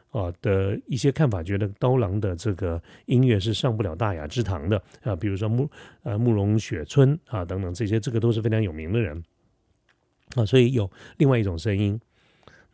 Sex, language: male, Chinese